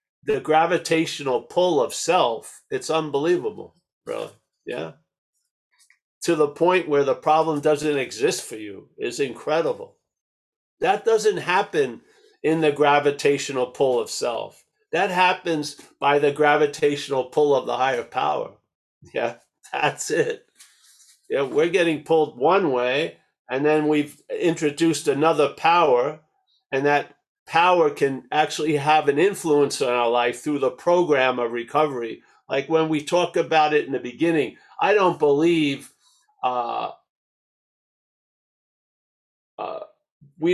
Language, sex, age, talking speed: English, male, 50-69, 125 wpm